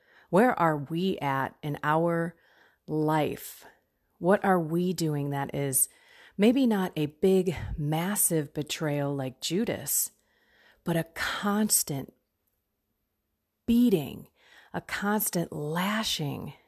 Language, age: English, 40-59